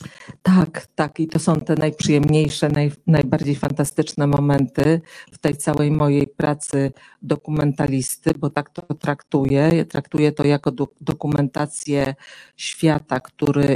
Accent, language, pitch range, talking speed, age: native, Polish, 140-155 Hz, 115 wpm, 50-69